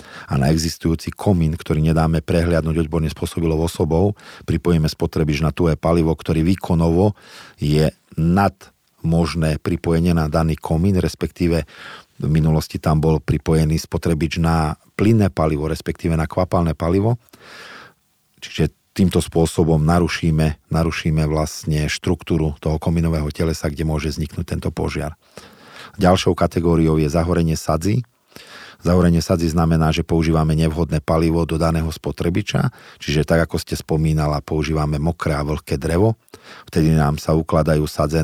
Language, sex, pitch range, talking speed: Slovak, male, 80-85 Hz, 130 wpm